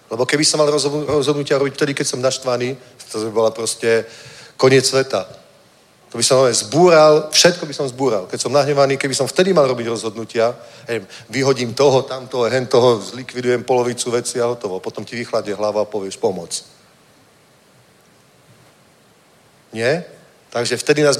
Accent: native